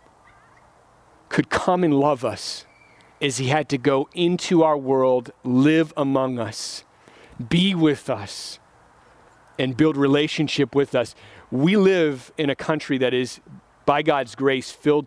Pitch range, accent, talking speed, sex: 135-160 Hz, American, 140 wpm, male